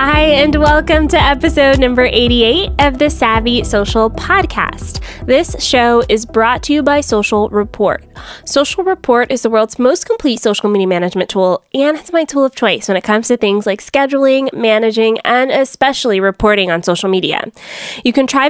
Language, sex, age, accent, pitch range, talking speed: English, female, 20-39, American, 195-255 Hz, 180 wpm